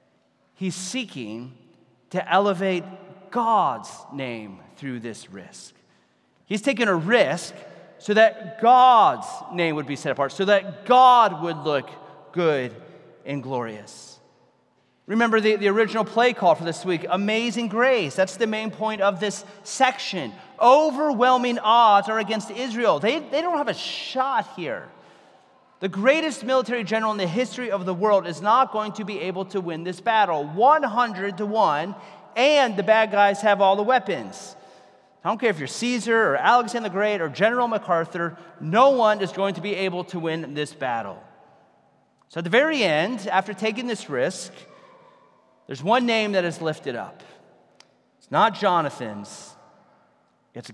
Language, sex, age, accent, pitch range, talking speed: English, male, 30-49, American, 170-235 Hz, 160 wpm